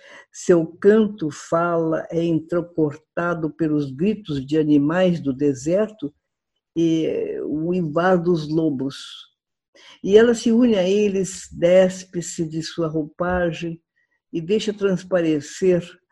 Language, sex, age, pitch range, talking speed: Portuguese, female, 60-79, 155-205 Hz, 110 wpm